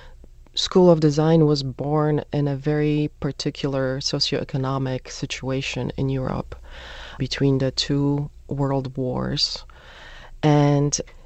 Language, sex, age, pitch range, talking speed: English, female, 30-49, 135-160 Hz, 100 wpm